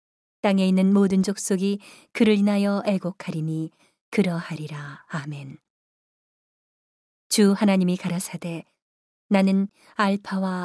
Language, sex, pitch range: Korean, female, 175-205 Hz